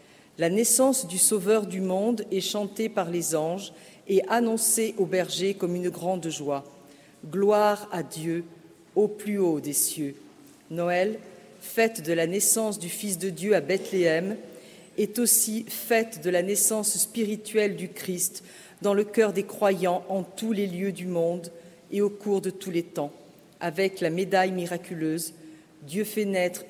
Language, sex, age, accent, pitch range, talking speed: French, female, 50-69, French, 170-200 Hz, 160 wpm